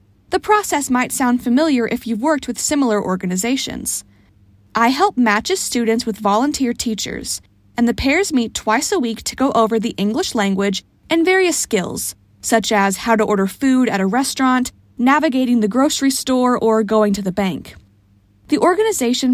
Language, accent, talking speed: English, American, 170 wpm